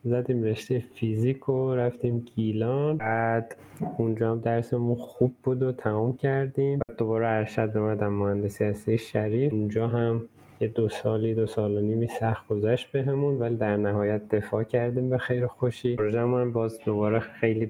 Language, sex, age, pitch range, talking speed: Persian, male, 20-39, 105-125 Hz, 165 wpm